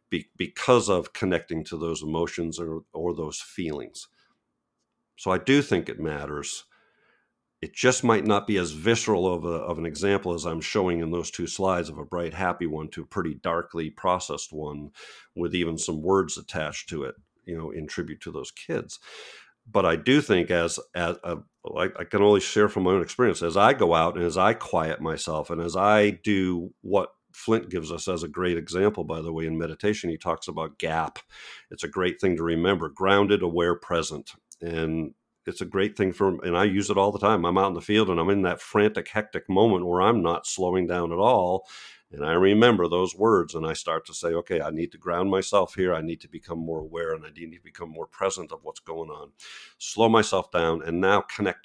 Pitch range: 80-100 Hz